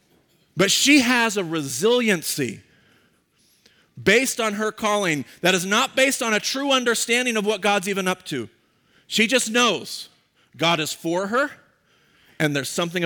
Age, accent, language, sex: 40-59, American, English, male